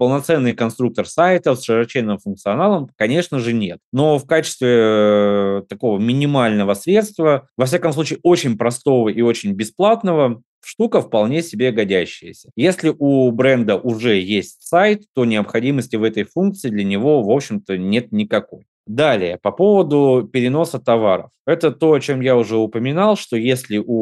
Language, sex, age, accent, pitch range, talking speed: Russian, male, 20-39, native, 105-145 Hz, 145 wpm